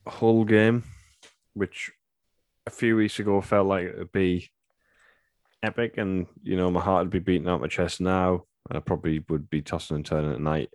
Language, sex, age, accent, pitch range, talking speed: English, male, 10-29, British, 80-95 Hz, 195 wpm